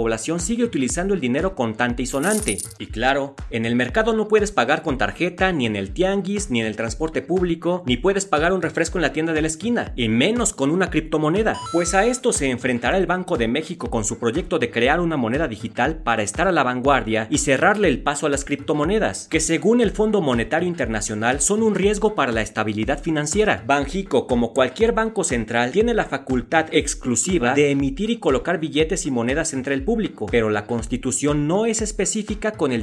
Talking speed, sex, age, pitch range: 205 wpm, male, 40-59, 125-190 Hz